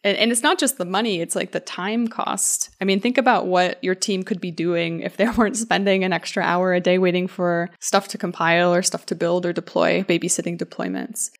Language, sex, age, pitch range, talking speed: English, female, 20-39, 180-220 Hz, 225 wpm